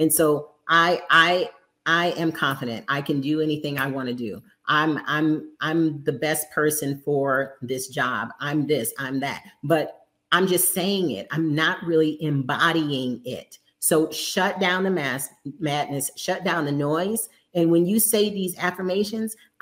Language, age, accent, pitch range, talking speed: English, 40-59, American, 155-200 Hz, 160 wpm